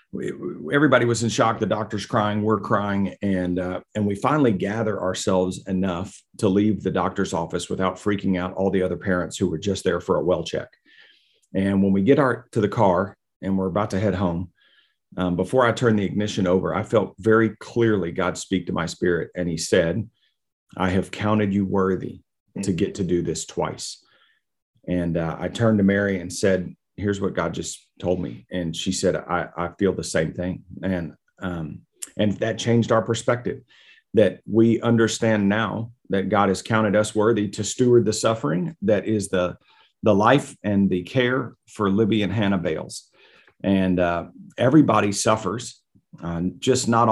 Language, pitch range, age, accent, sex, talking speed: English, 95-110 Hz, 40-59, American, male, 185 wpm